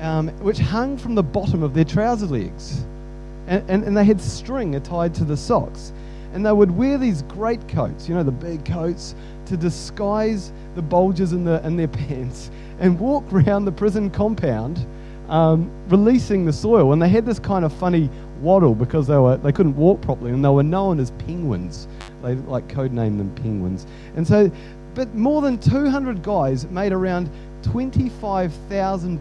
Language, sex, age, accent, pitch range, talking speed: English, male, 30-49, Australian, 120-190 Hz, 180 wpm